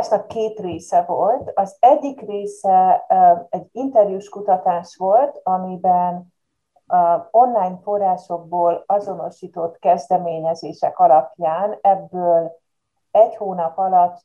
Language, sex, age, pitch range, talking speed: Hungarian, female, 30-49, 165-215 Hz, 90 wpm